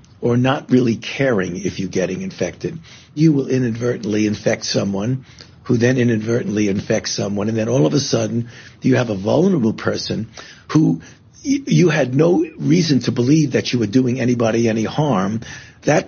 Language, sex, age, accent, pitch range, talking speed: English, male, 60-79, American, 115-150 Hz, 165 wpm